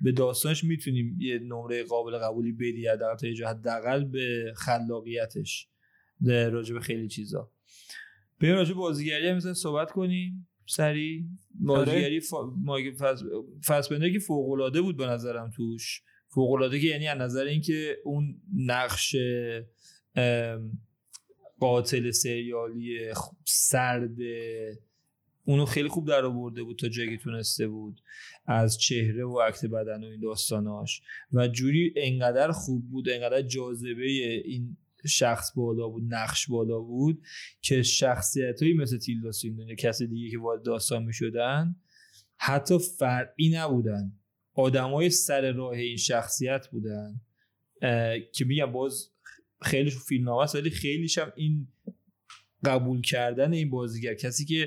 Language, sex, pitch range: Persian, male, 115-145 Hz